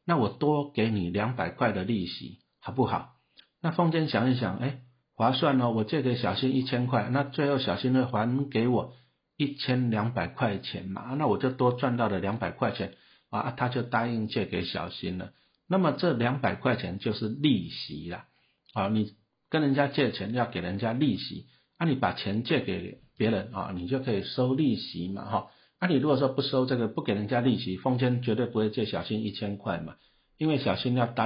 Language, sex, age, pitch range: Chinese, male, 50-69, 105-130 Hz